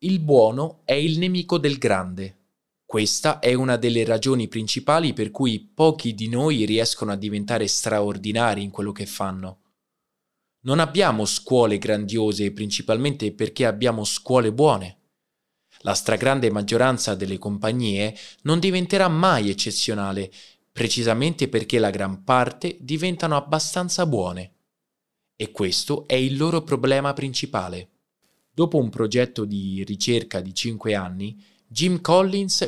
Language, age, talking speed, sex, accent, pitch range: Italian, 20-39, 125 wpm, male, native, 105-150 Hz